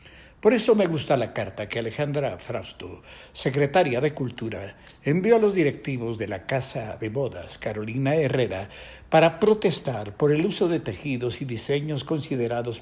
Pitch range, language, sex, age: 115-170 Hz, Spanish, male, 60-79